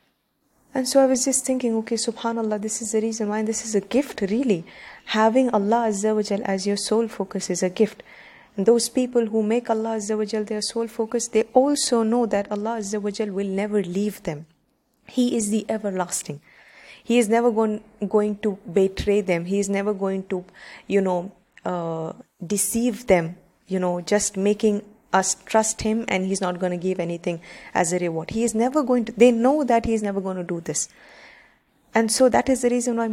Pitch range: 190-230 Hz